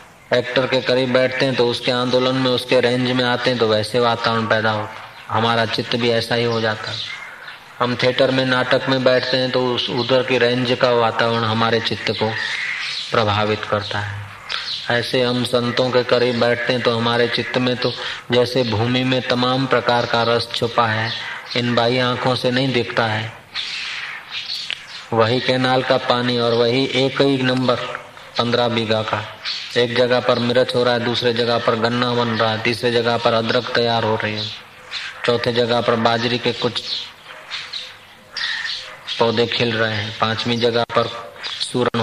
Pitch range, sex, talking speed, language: 115-125 Hz, male, 155 wpm, Hindi